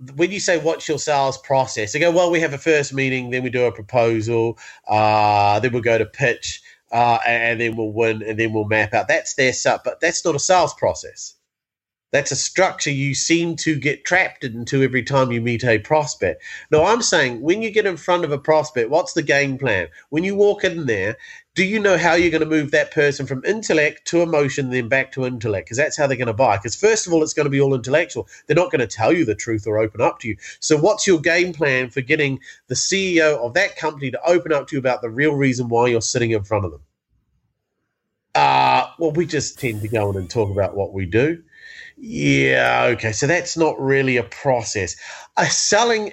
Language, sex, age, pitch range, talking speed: English, male, 30-49, 125-180 Hz, 235 wpm